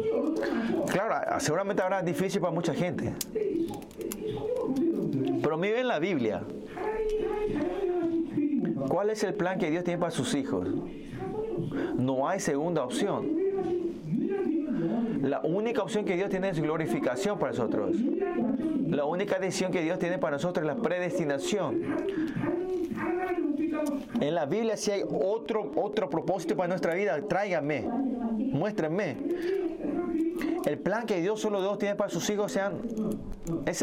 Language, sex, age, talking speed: Spanish, male, 30-49, 125 wpm